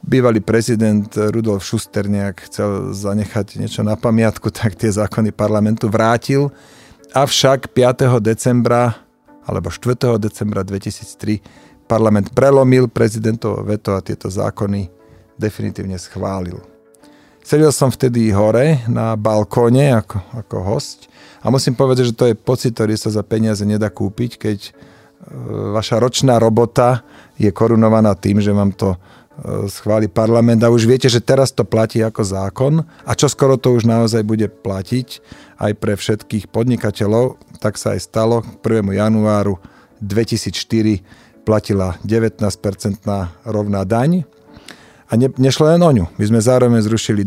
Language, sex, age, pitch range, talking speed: Slovak, male, 40-59, 105-120 Hz, 135 wpm